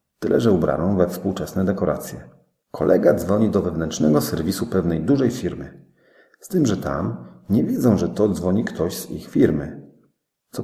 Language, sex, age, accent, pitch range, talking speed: Polish, male, 40-59, native, 80-100 Hz, 160 wpm